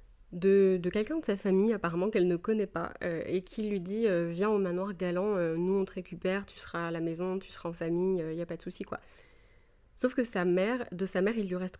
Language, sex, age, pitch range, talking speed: French, female, 20-39, 175-205 Hz, 280 wpm